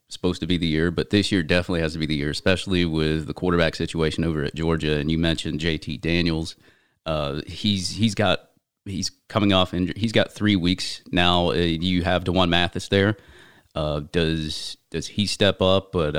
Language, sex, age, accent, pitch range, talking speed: English, male, 30-49, American, 80-95 Hz, 200 wpm